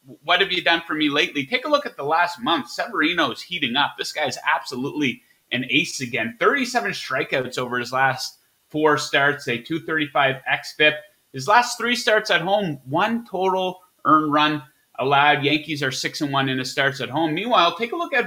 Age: 30-49